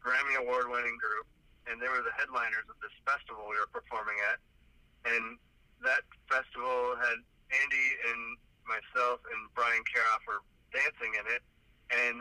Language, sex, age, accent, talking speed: English, male, 40-59, American, 145 wpm